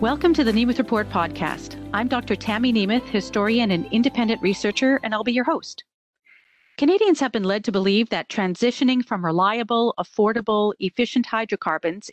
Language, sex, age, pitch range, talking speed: English, female, 40-59, 195-255 Hz, 160 wpm